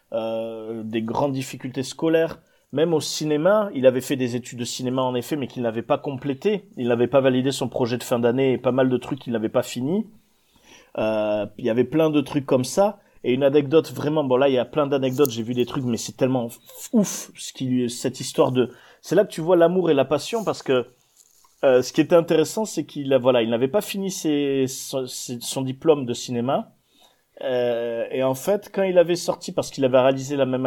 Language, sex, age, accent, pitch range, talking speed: French, male, 30-49, French, 125-165 Hz, 230 wpm